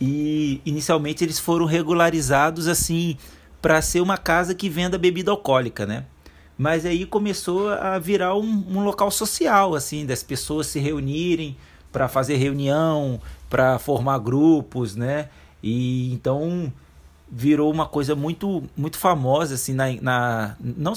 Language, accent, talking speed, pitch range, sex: Portuguese, Brazilian, 135 wpm, 120-170 Hz, male